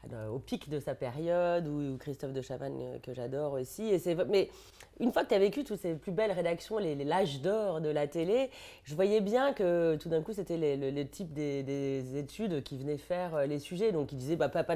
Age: 30-49